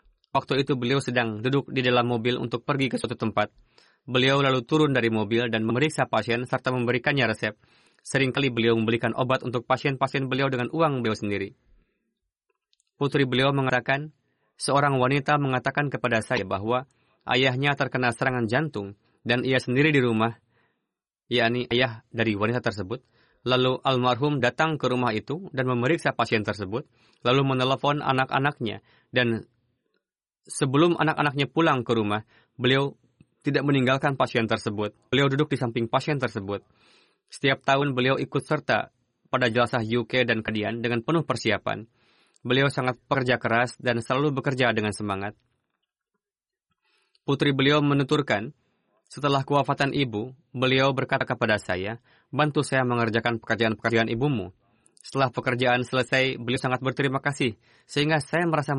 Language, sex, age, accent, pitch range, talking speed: Indonesian, male, 20-39, native, 115-140 Hz, 140 wpm